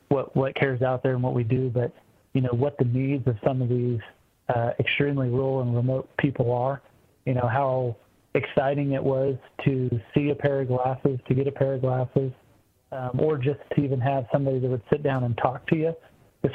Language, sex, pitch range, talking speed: English, male, 125-145 Hz, 220 wpm